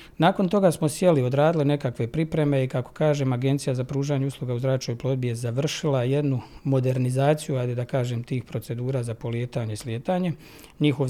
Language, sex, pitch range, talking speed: Croatian, male, 130-155 Hz, 175 wpm